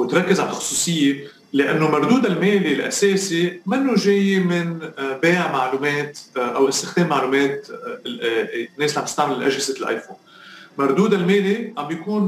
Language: Arabic